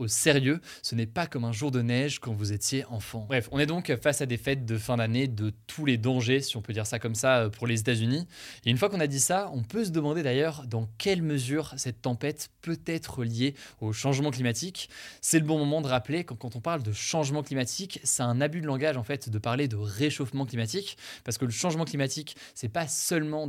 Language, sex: French, male